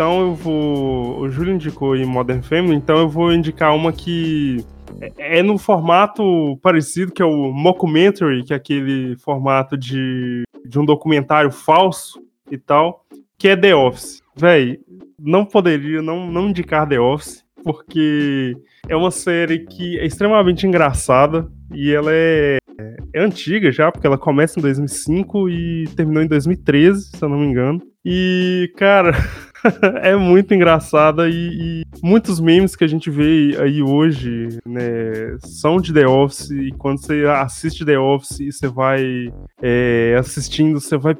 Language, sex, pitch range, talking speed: Portuguese, male, 135-165 Hz, 155 wpm